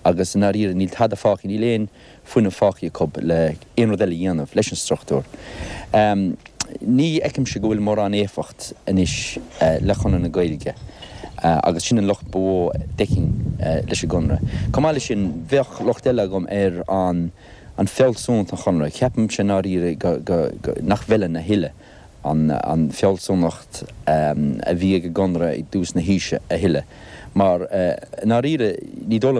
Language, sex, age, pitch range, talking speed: English, male, 60-79, 80-105 Hz, 115 wpm